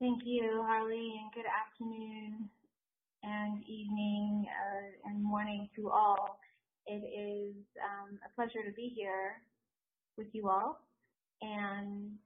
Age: 30-49